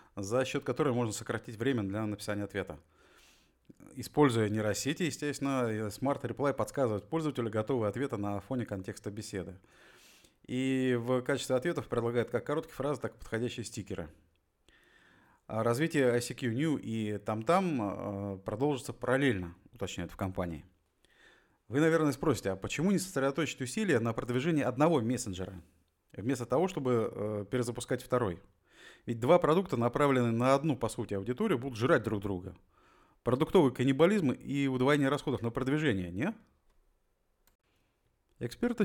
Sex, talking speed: male, 130 wpm